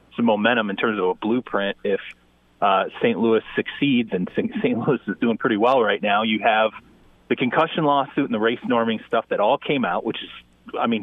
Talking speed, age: 205 wpm, 30-49